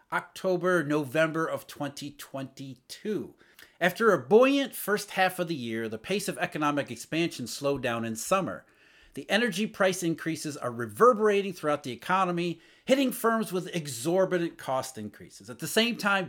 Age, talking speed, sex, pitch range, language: 40-59, 145 wpm, male, 145-215 Hz, English